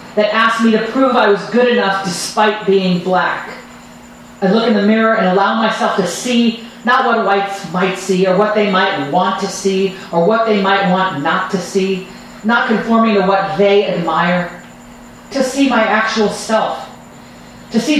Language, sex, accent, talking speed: English, female, American, 185 wpm